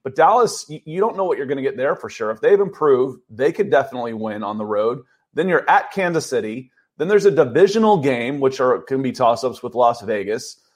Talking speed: 230 wpm